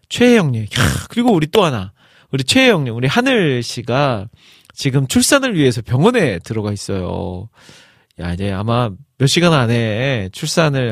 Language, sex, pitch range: Korean, male, 110-170 Hz